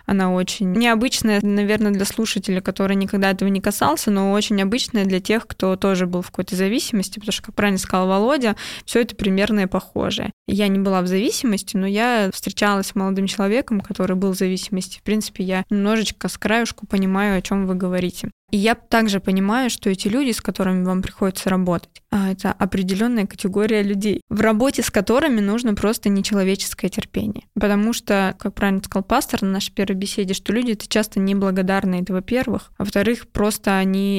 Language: Russian